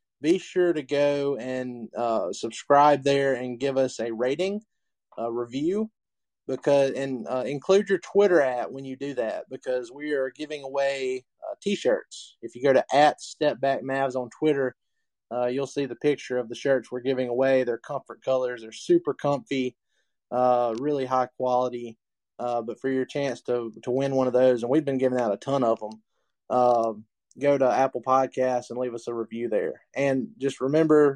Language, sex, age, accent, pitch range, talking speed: English, male, 20-39, American, 125-150 Hz, 190 wpm